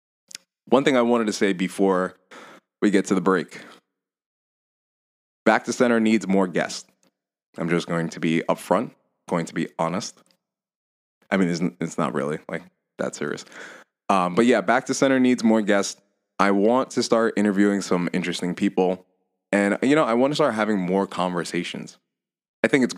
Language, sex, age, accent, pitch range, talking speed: English, male, 20-39, American, 90-110 Hz, 170 wpm